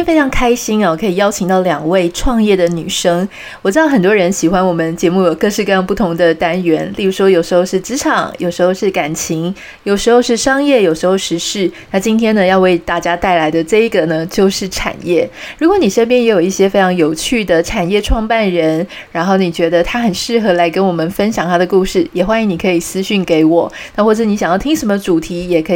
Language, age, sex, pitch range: Chinese, 20-39, female, 175-220 Hz